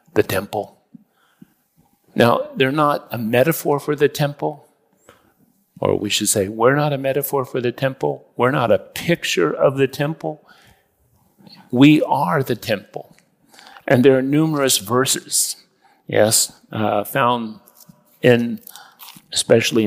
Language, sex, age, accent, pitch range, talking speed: English, male, 50-69, American, 115-145 Hz, 125 wpm